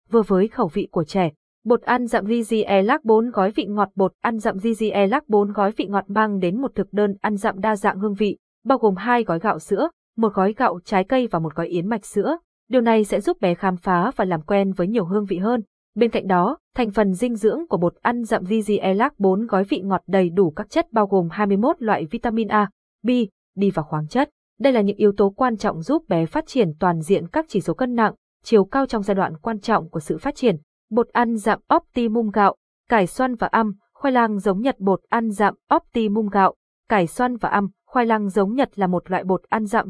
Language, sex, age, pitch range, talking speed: Vietnamese, female, 20-39, 190-235 Hz, 235 wpm